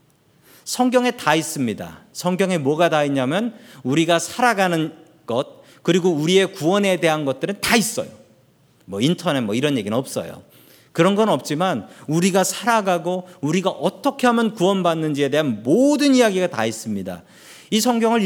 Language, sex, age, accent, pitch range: Korean, male, 40-59, native, 150-210 Hz